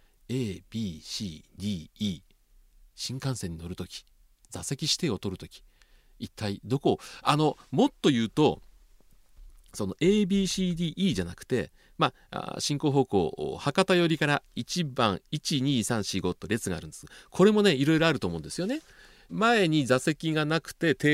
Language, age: Japanese, 40-59